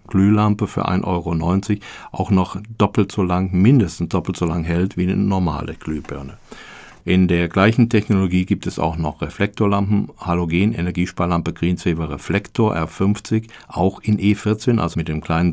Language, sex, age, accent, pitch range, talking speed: German, male, 50-69, German, 85-105 Hz, 150 wpm